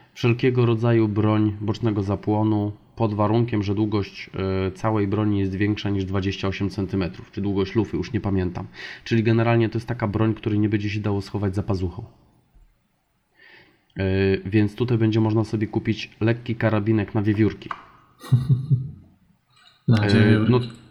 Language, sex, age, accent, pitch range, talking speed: Polish, male, 20-39, native, 95-115 Hz, 135 wpm